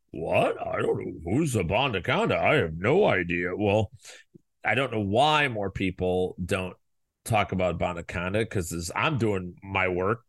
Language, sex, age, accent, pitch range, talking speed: English, male, 30-49, American, 95-115 Hz, 155 wpm